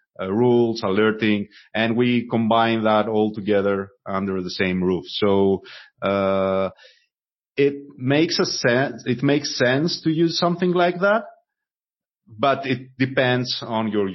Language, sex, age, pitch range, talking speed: English, male, 30-49, 105-135 Hz, 135 wpm